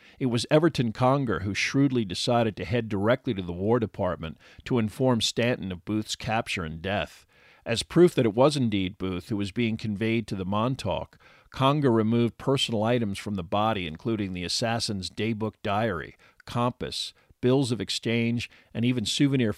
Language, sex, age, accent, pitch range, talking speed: English, male, 50-69, American, 100-120 Hz, 170 wpm